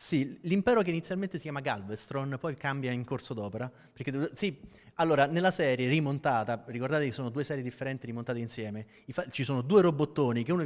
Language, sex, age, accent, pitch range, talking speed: Italian, male, 30-49, native, 130-175 Hz, 180 wpm